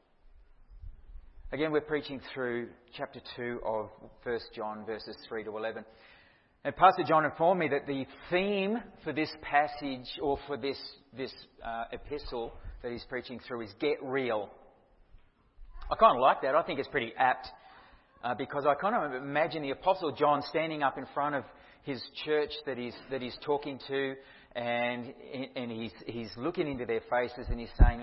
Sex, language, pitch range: male, English, 120-155 Hz